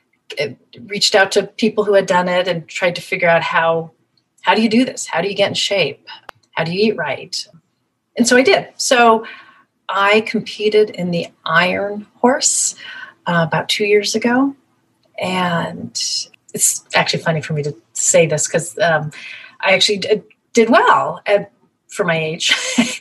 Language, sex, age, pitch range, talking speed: English, female, 30-49, 165-220 Hz, 165 wpm